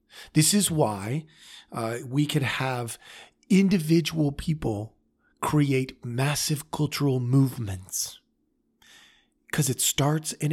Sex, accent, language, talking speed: male, American, English, 95 wpm